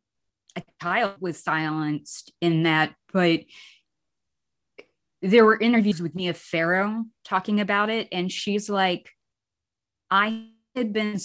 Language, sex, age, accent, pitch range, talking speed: English, female, 20-39, American, 170-220 Hz, 115 wpm